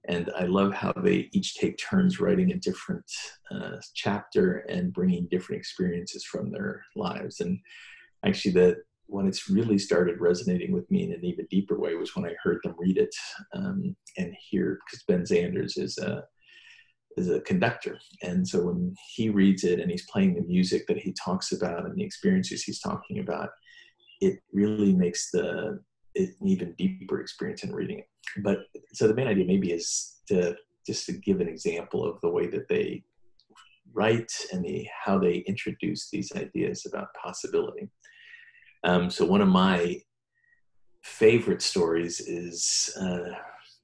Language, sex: English, male